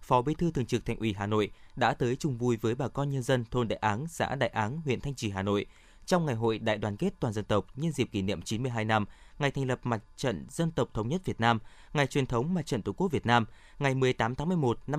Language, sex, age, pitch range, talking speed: Vietnamese, male, 20-39, 110-145 Hz, 275 wpm